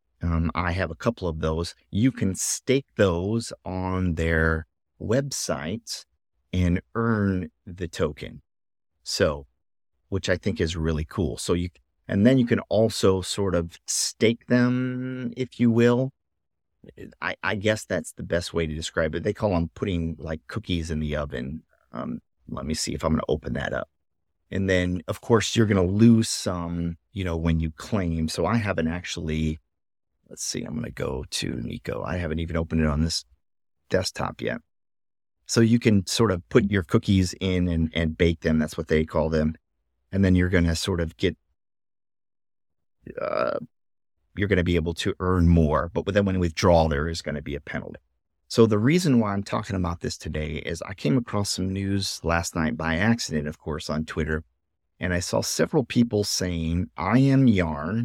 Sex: male